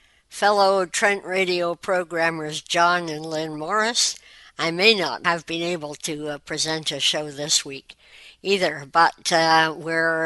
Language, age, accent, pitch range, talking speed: English, 60-79, American, 155-190 Hz, 145 wpm